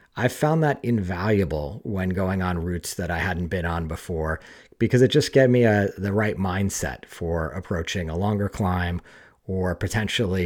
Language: English